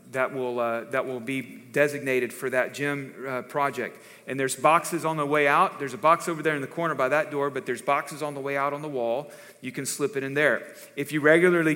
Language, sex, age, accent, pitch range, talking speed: English, male, 40-59, American, 135-165 Hz, 250 wpm